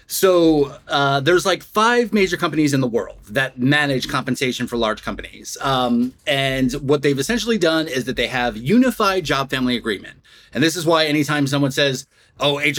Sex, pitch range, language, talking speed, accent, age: male, 135-185 Hz, English, 180 wpm, American, 30-49